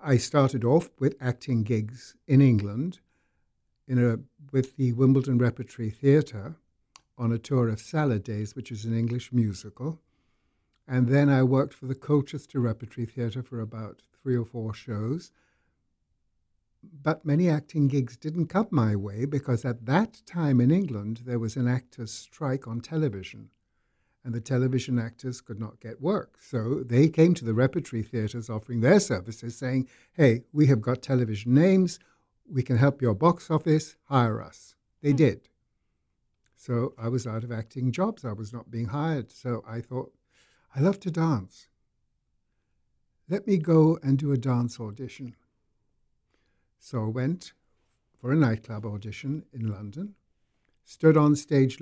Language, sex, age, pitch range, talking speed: English, male, 60-79, 115-145 Hz, 155 wpm